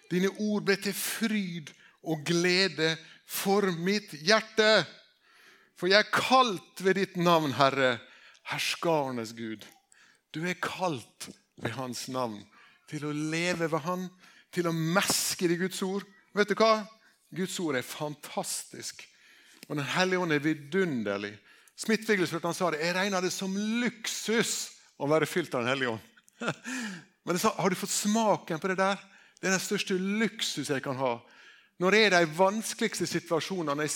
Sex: male